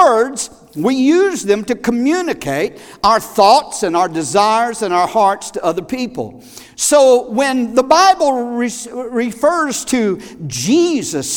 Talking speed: 125 wpm